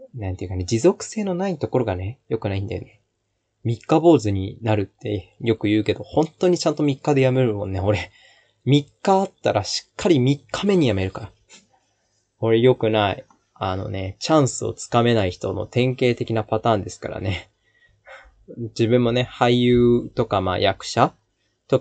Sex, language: male, Japanese